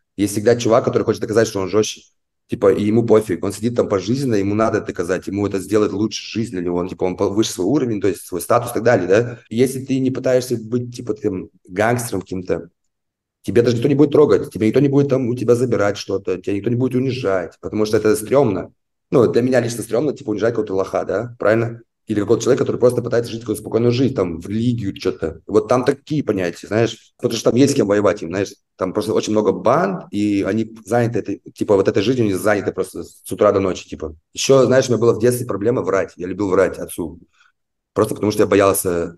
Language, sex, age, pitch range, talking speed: Russian, male, 30-49, 100-120 Hz, 235 wpm